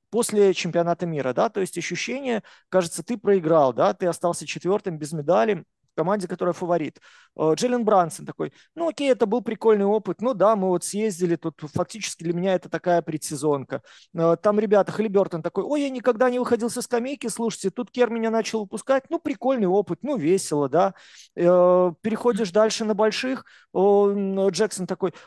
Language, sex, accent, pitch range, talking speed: Russian, male, native, 180-235 Hz, 165 wpm